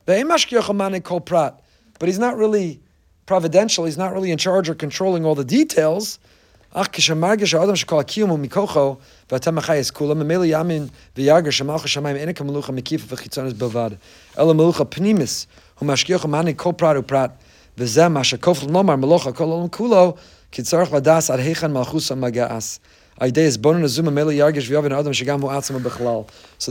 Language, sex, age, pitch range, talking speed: English, male, 30-49, 125-170 Hz, 35 wpm